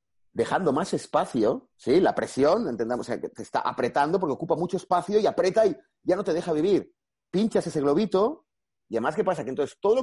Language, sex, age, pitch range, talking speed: Spanish, male, 30-49, 125-195 Hz, 210 wpm